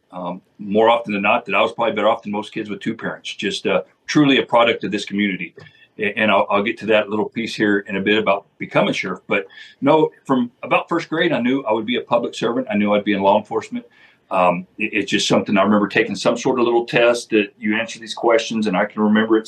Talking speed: 260 wpm